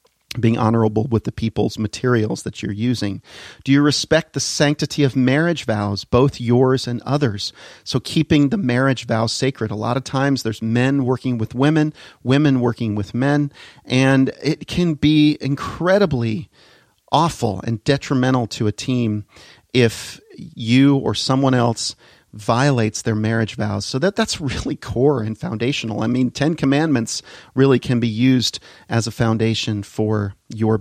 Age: 40-59